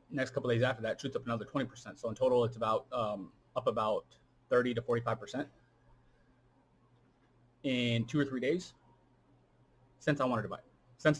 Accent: American